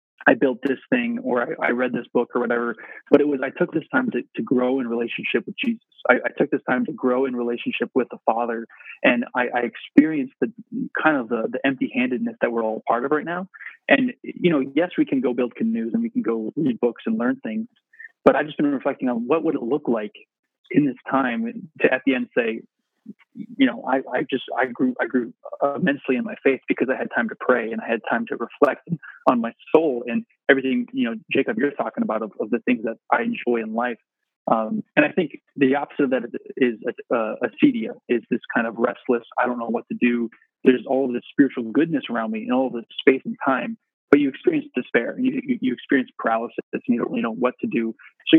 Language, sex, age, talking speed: English, male, 30-49, 240 wpm